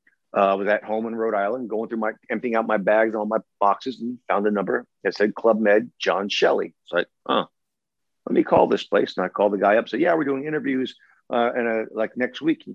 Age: 50-69